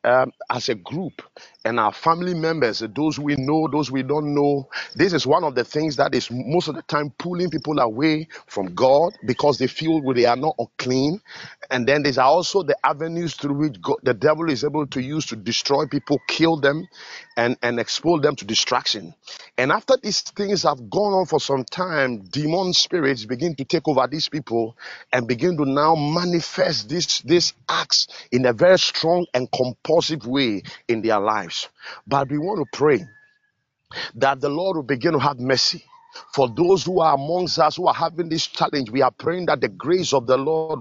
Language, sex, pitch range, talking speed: English, male, 135-170 Hz, 195 wpm